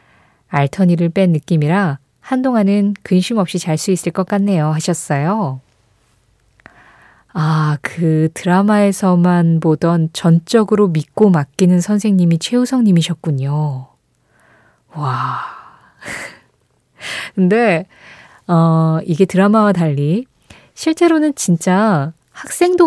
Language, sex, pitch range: Korean, female, 160-220 Hz